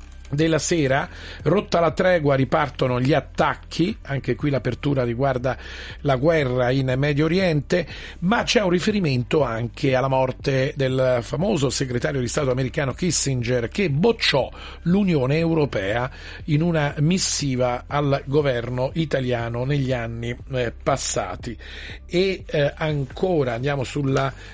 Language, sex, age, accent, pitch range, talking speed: Italian, male, 40-59, native, 125-160 Hz, 115 wpm